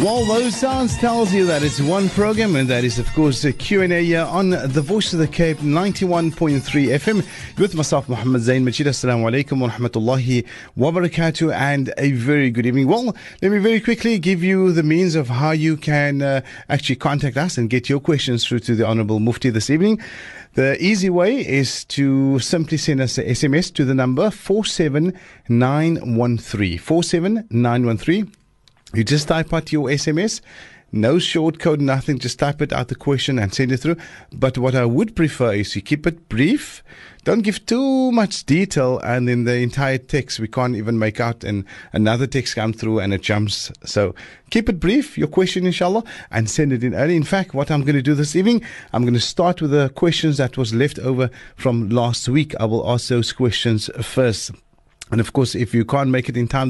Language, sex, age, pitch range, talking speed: English, male, 30-49, 125-170 Hz, 195 wpm